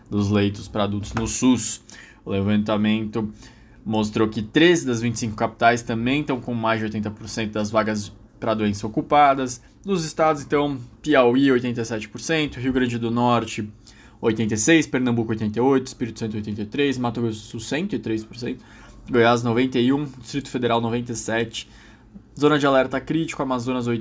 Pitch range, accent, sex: 110-125 Hz, Brazilian, male